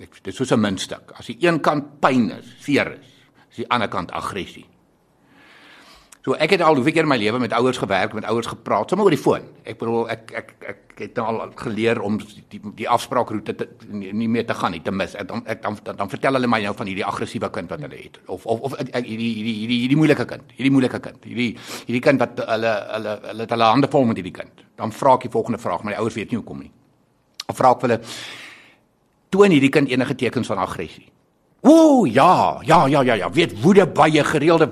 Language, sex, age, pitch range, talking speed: English, male, 60-79, 110-145 Hz, 240 wpm